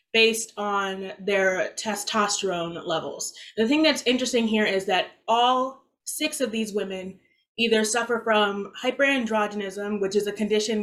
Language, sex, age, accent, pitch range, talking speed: English, female, 20-39, American, 190-220 Hz, 140 wpm